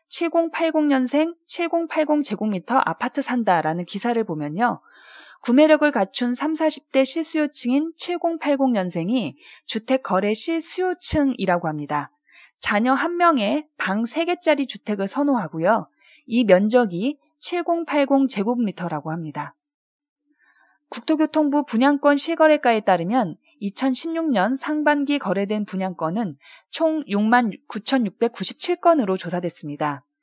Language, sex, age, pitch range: Korean, female, 20-39, 200-305 Hz